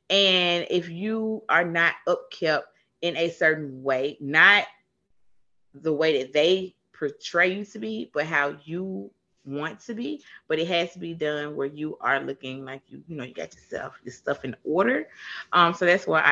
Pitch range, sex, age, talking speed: 145-215 Hz, female, 30-49, 190 wpm